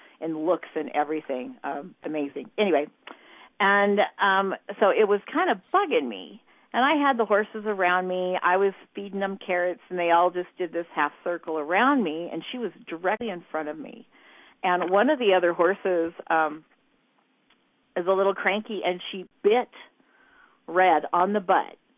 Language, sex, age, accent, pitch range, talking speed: English, female, 50-69, American, 160-205 Hz, 175 wpm